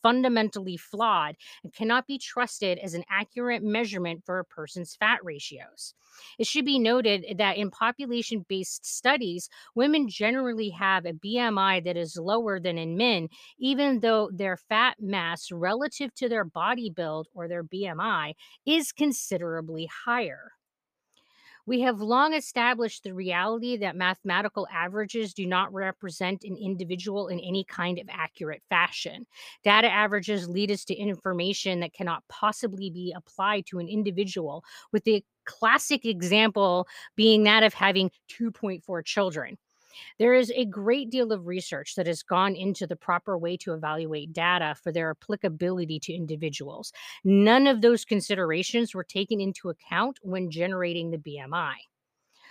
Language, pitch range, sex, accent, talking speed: English, 175-225 Hz, female, American, 145 wpm